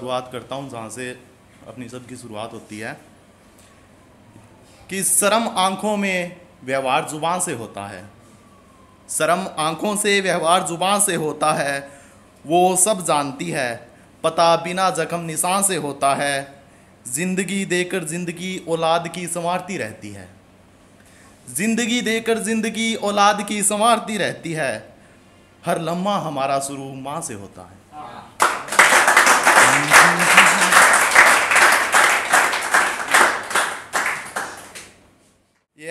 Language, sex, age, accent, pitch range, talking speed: Hindi, male, 30-49, native, 115-180 Hz, 105 wpm